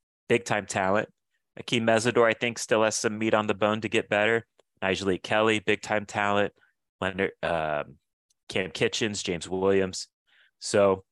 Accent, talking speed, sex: American, 145 wpm, male